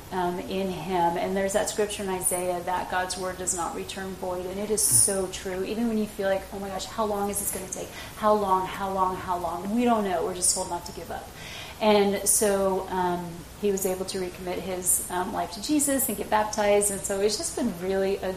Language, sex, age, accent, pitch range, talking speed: English, female, 30-49, American, 185-210 Hz, 245 wpm